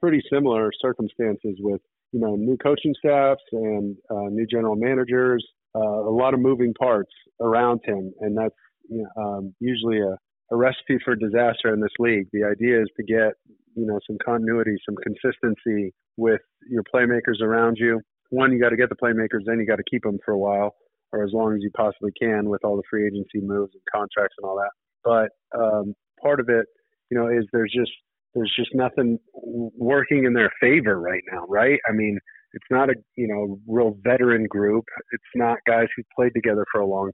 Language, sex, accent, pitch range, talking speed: English, male, American, 105-120 Hz, 200 wpm